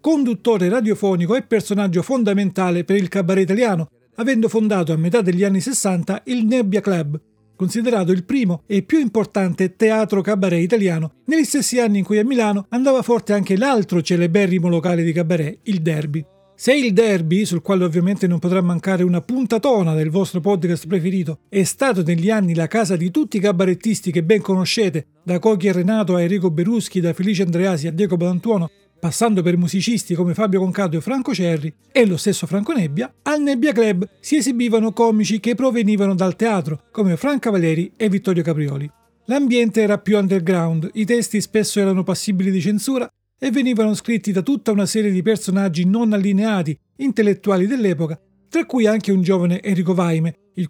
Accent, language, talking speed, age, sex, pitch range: native, Italian, 175 wpm, 40-59, male, 180-225 Hz